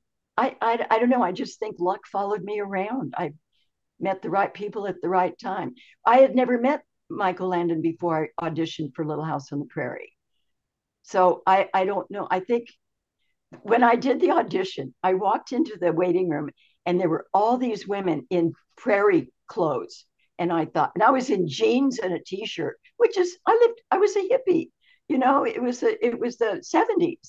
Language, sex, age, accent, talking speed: English, female, 60-79, American, 200 wpm